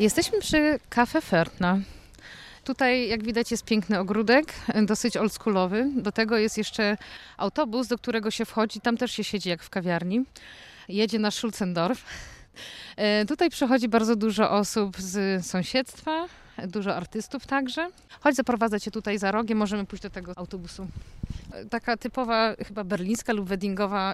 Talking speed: 140 wpm